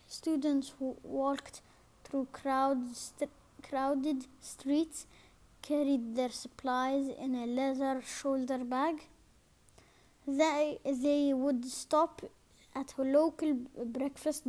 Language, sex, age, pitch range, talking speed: English, female, 20-39, 255-290 Hz, 90 wpm